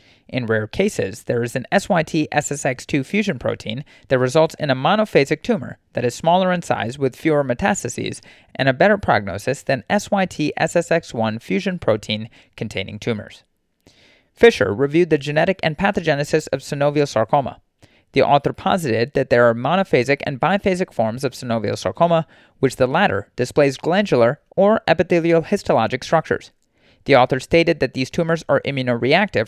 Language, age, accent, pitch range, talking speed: English, 30-49, American, 125-165 Hz, 150 wpm